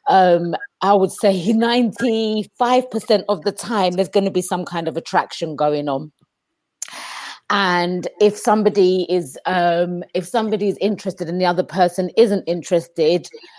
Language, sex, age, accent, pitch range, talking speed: English, female, 30-49, British, 175-210 Hz, 145 wpm